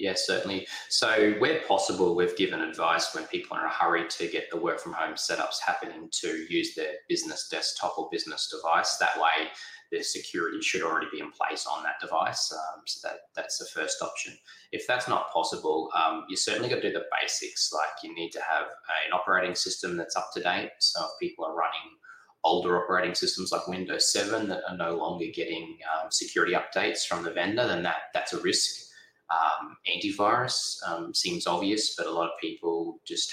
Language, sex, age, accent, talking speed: English, male, 20-39, Australian, 195 wpm